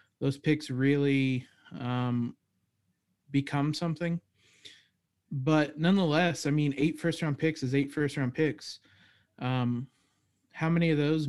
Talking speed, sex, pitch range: 115 wpm, male, 130-160 Hz